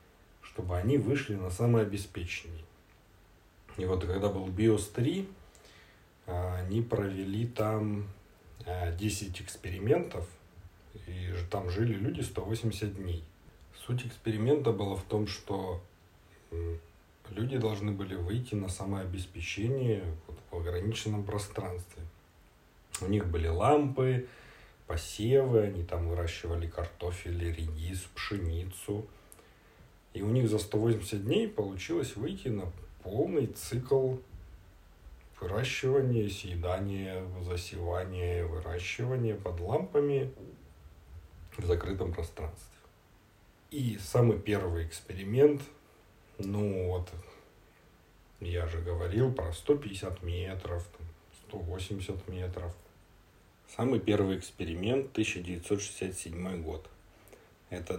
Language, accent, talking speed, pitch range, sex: Russian, native, 90 wpm, 85-110 Hz, male